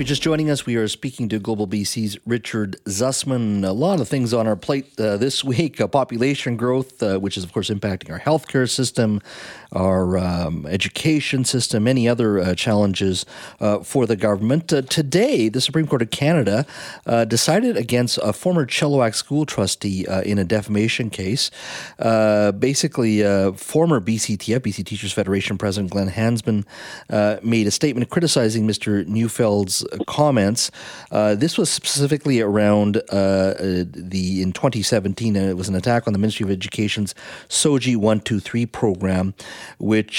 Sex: male